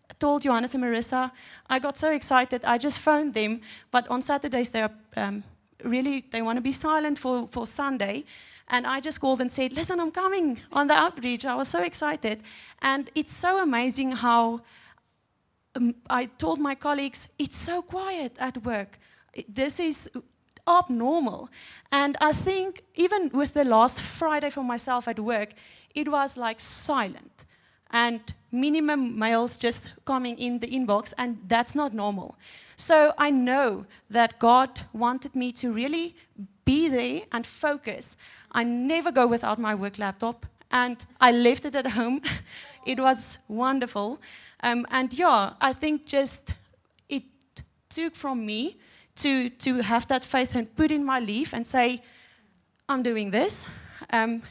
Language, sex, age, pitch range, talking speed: English, female, 30-49, 235-290 Hz, 160 wpm